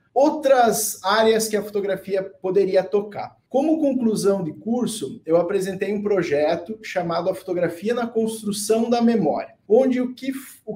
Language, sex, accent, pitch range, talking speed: Portuguese, male, Brazilian, 180-235 Hz, 135 wpm